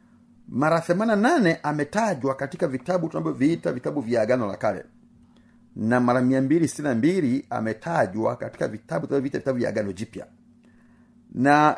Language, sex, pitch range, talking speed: Swahili, male, 130-195 Hz, 115 wpm